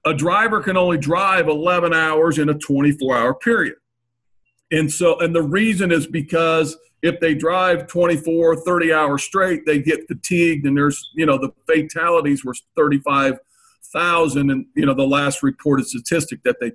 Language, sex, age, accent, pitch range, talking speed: English, male, 50-69, American, 155-185 Hz, 165 wpm